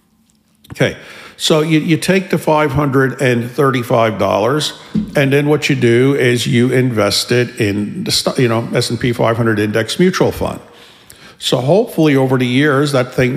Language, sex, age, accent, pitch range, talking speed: English, male, 50-69, American, 115-145 Hz, 145 wpm